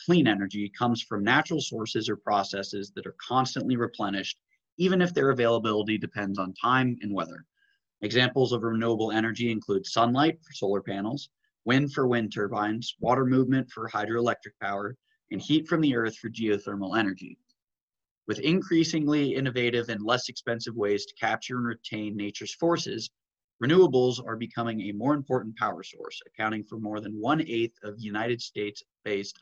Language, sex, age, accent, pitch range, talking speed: English, male, 30-49, American, 105-135 Hz, 155 wpm